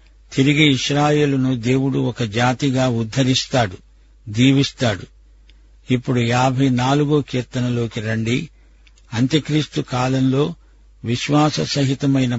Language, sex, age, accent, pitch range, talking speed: Telugu, male, 50-69, native, 120-140 Hz, 75 wpm